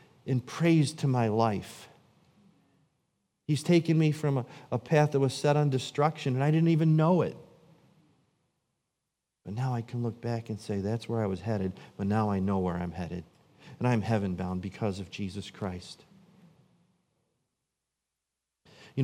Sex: male